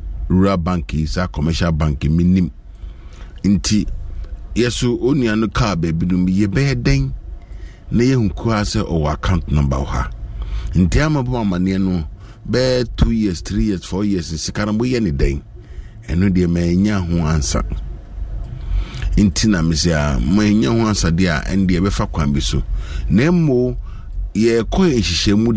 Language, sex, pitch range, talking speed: English, male, 85-115 Hz, 125 wpm